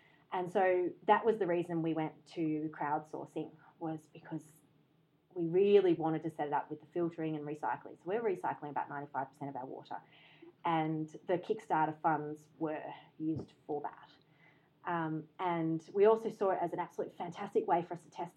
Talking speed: 180 wpm